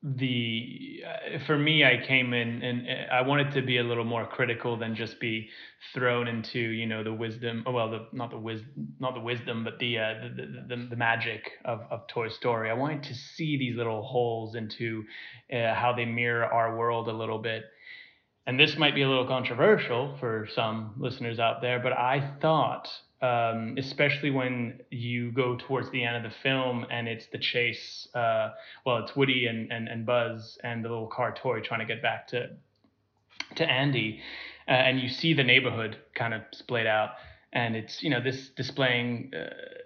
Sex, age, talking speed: male, 20-39, 200 wpm